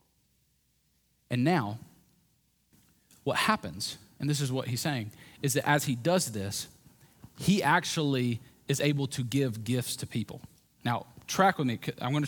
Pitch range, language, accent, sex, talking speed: 150-205 Hz, English, American, male, 150 wpm